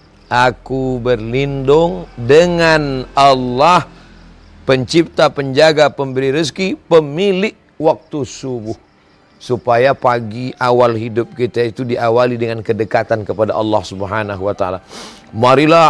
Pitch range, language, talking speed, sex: 115-150 Hz, Indonesian, 100 wpm, male